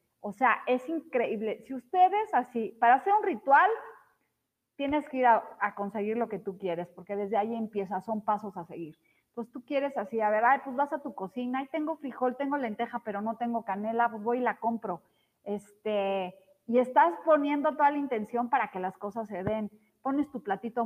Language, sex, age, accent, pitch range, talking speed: Spanish, female, 30-49, Mexican, 200-255 Hz, 205 wpm